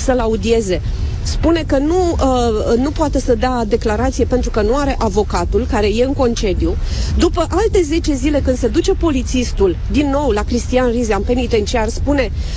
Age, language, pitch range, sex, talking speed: 30-49, Romanian, 255-340 Hz, female, 170 wpm